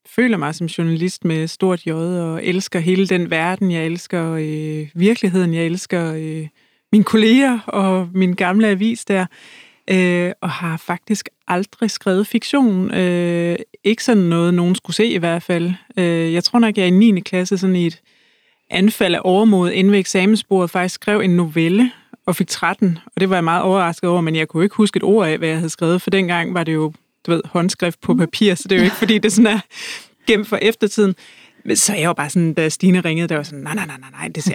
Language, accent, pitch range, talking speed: Danish, native, 170-205 Hz, 215 wpm